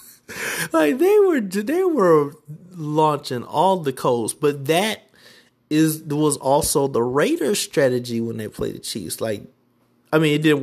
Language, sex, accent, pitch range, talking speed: English, male, American, 115-150 Hz, 150 wpm